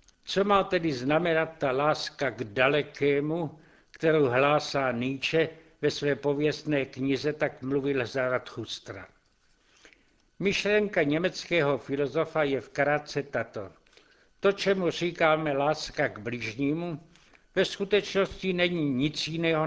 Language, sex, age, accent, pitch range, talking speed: Czech, male, 60-79, native, 140-170 Hz, 115 wpm